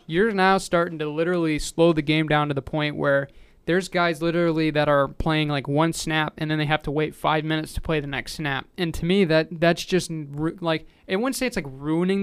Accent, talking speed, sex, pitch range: American, 240 wpm, male, 150-175 Hz